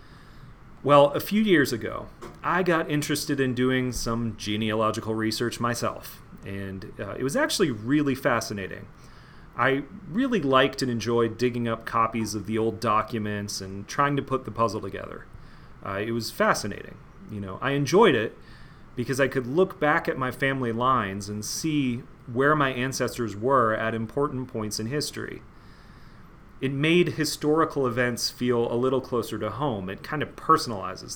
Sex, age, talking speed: male, 30-49, 160 wpm